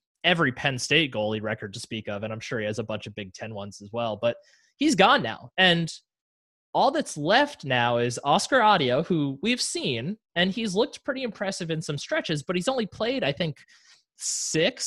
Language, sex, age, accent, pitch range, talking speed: English, male, 20-39, American, 125-190 Hz, 205 wpm